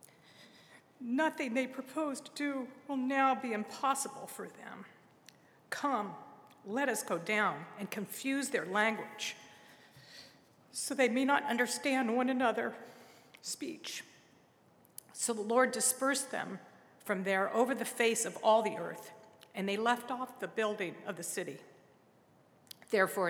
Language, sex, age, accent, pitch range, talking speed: English, female, 50-69, American, 195-245 Hz, 135 wpm